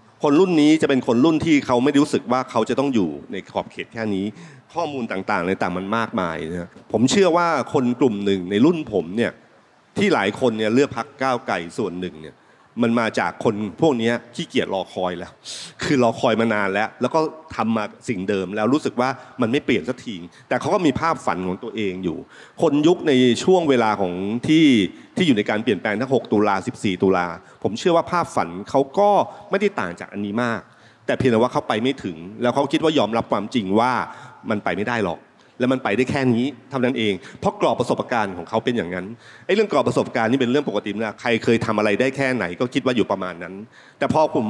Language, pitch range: Thai, 105-135 Hz